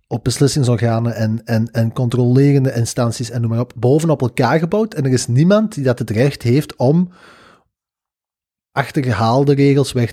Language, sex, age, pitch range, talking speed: Dutch, male, 20-39, 115-145 Hz, 160 wpm